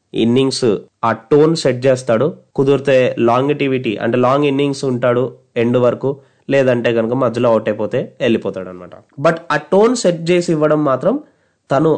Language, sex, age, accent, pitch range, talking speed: Telugu, male, 30-49, native, 120-160 Hz, 135 wpm